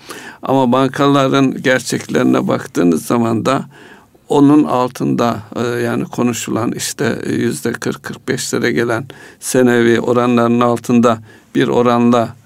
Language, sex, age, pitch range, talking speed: Turkish, male, 60-79, 110-130 Hz, 85 wpm